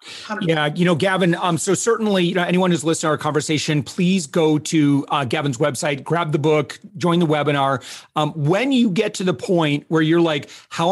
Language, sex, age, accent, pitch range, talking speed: English, male, 40-59, American, 150-195 Hz, 210 wpm